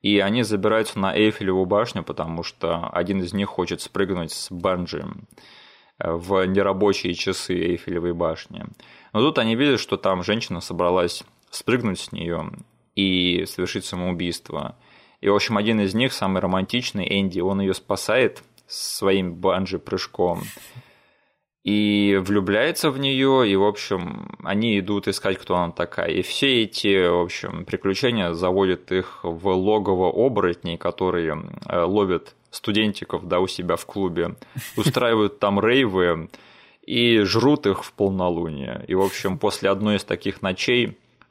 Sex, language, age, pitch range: male, Russian, 20-39, 90-105 Hz